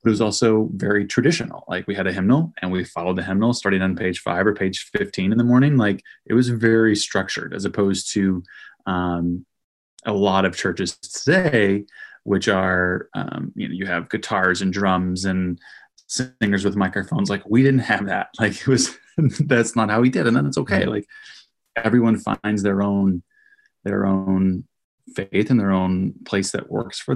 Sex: male